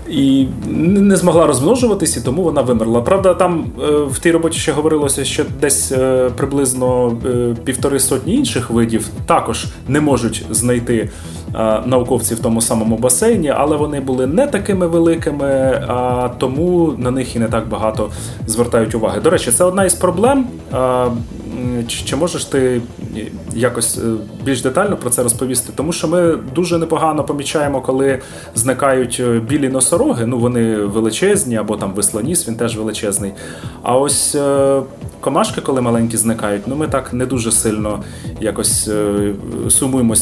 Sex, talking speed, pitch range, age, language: male, 140 wpm, 110-140 Hz, 30-49, Ukrainian